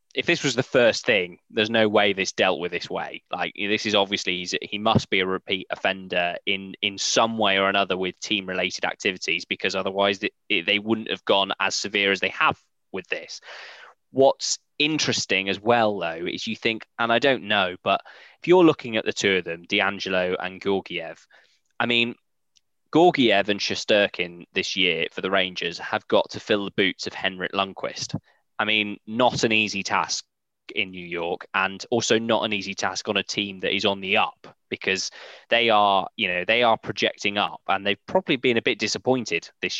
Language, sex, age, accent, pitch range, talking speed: English, male, 10-29, British, 95-115 Hz, 200 wpm